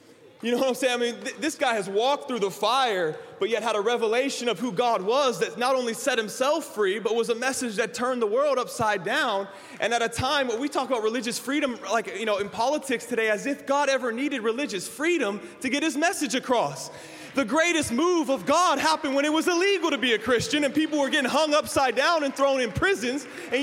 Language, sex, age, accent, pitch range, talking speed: English, male, 20-39, American, 225-295 Hz, 235 wpm